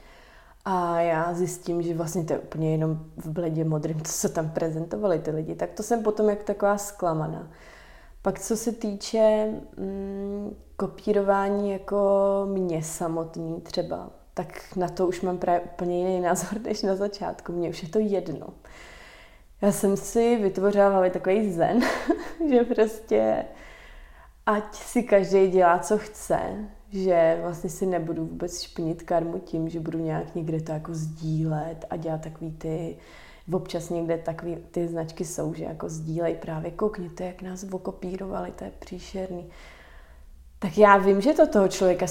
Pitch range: 160-195 Hz